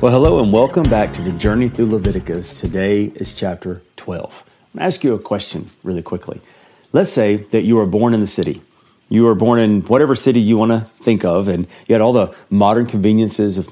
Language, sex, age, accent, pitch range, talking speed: English, male, 40-59, American, 100-120 Hz, 225 wpm